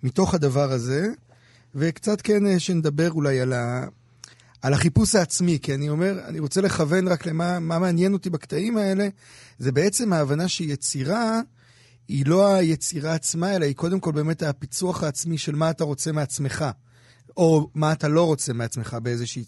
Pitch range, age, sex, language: 130-175 Hz, 30-49, male, Hebrew